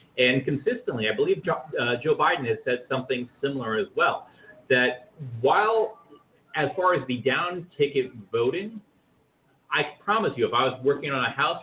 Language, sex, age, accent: English, male, 30-49, American